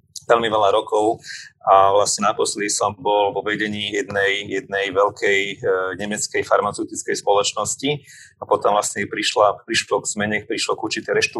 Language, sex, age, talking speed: Slovak, male, 30-49, 140 wpm